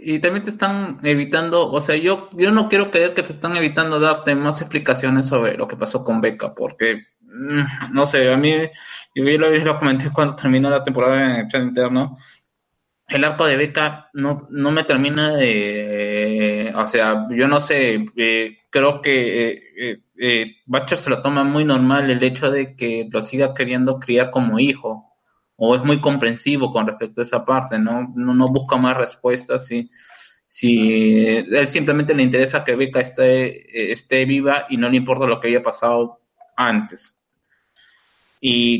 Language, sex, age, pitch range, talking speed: Spanish, male, 20-39, 120-145 Hz, 180 wpm